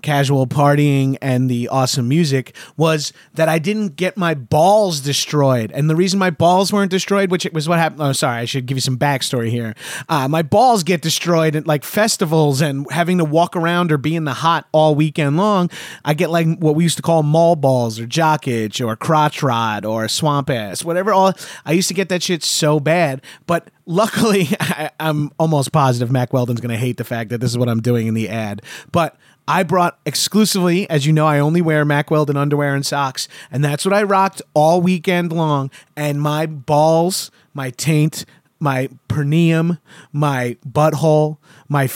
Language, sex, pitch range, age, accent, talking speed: English, male, 135-170 Hz, 30-49, American, 195 wpm